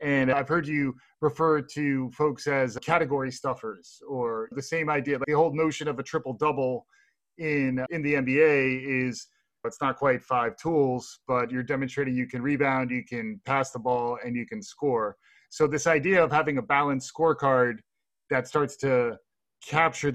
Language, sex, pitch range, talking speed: English, male, 130-155 Hz, 165 wpm